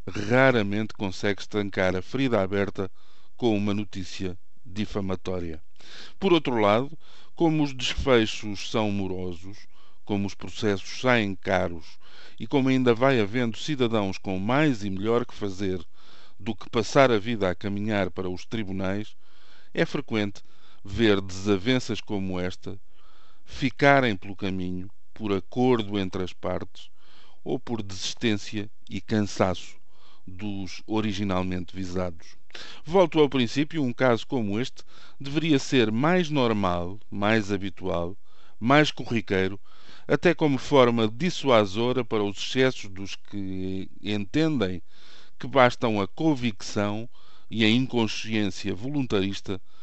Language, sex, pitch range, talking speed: Portuguese, male, 95-125 Hz, 120 wpm